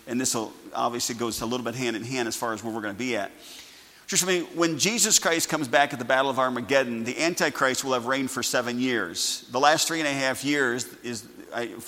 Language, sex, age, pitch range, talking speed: English, male, 40-59, 120-145 Hz, 240 wpm